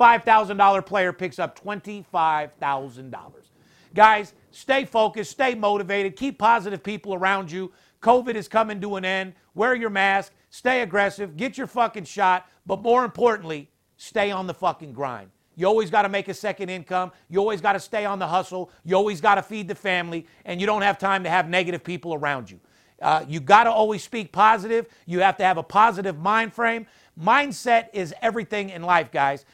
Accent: American